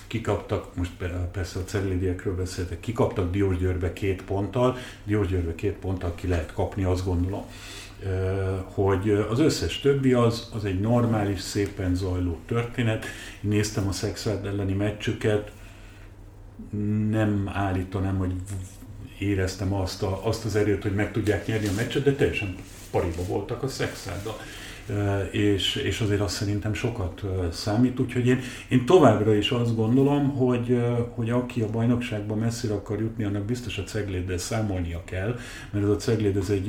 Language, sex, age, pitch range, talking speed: Hungarian, male, 50-69, 95-115 Hz, 145 wpm